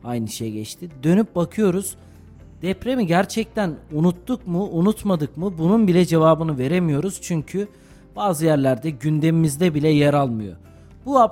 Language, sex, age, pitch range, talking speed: Turkish, male, 40-59, 145-200 Hz, 120 wpm